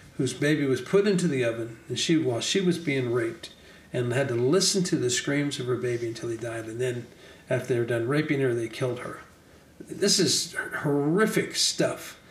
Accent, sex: American, male